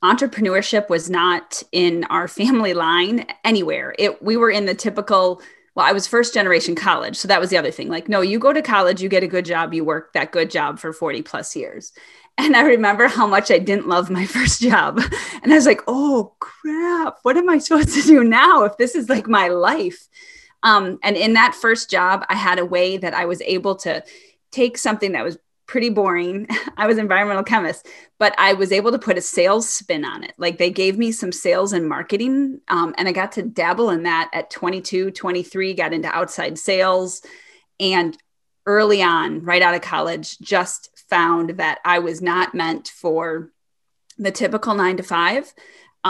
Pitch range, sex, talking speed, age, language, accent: 180-235 Hz, female, 200 wpm, 30-49, English, American